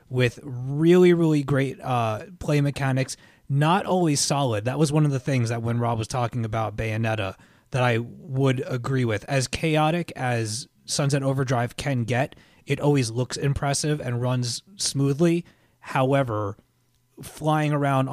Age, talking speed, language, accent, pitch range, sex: 30-49, 150 wpm, English, American, 115-140 Hz, male